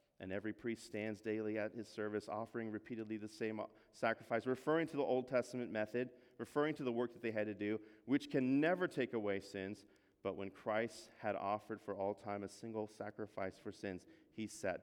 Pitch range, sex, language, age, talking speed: 100-120 Hz, male, English, 30-49, 200 wpm